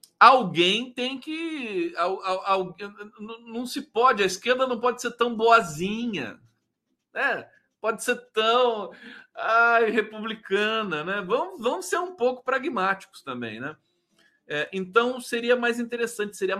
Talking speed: 135 wpm